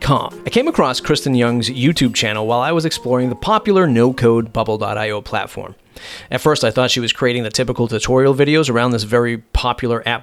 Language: English